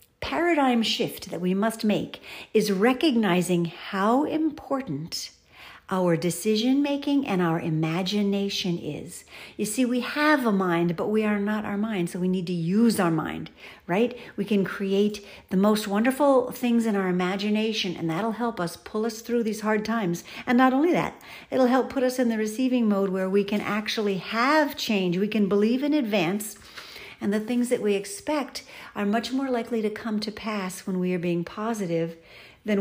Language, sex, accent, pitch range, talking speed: English, female, American, 185-245 Hz, 185 wpm